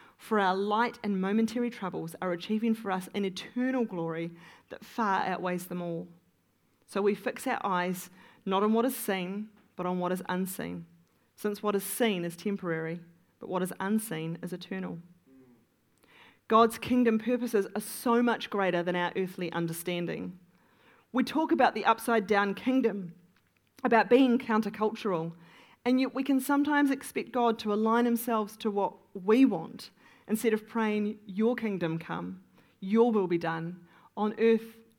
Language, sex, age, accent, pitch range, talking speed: English, female, 40-59, Australian, 180-235 Hz, 155 wpm